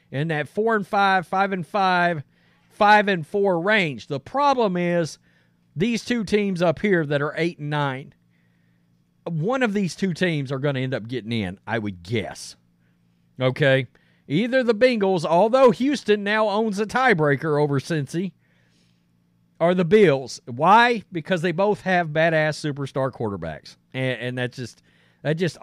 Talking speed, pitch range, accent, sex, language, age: 160 wpm, 120-180 Hz, American, male, English, 40-59